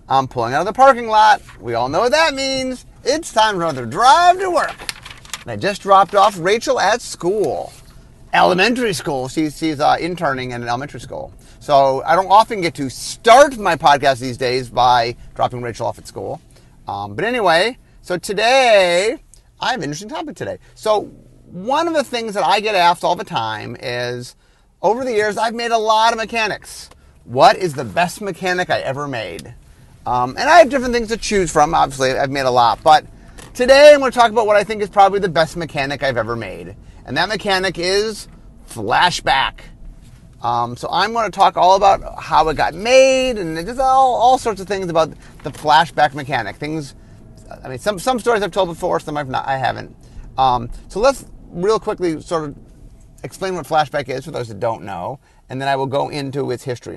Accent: American